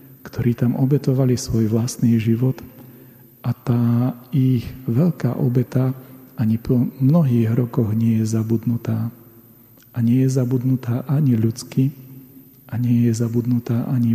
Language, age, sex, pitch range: Slovak, 40-59, male, 115-130 Hz